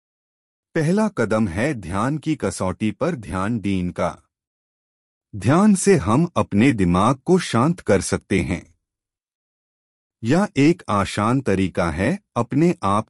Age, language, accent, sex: 30-49, Hindi, native, male